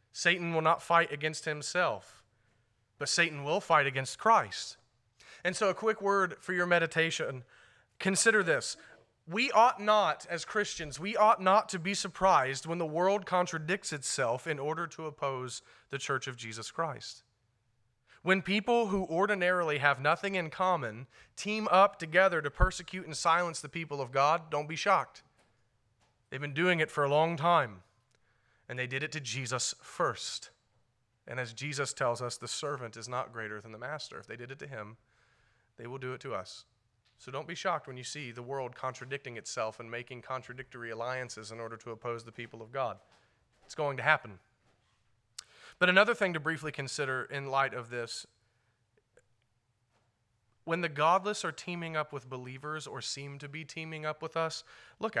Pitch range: 120-170 Hz